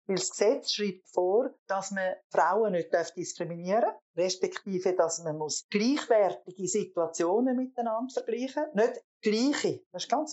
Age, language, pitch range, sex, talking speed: 50-69, German, 185-250 Hz, female, 145 wpm